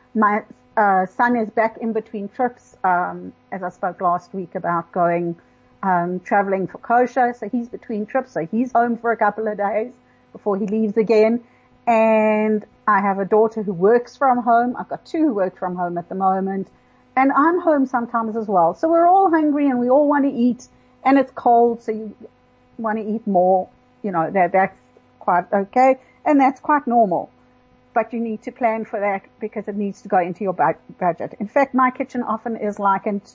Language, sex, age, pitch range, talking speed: English, female, 50-69, 190-245 Hz, 200 wpm